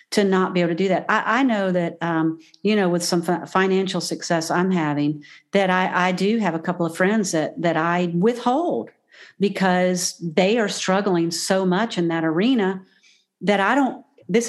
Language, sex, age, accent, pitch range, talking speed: English, female, 50-69, American, 170-210 Hz, 195 wpm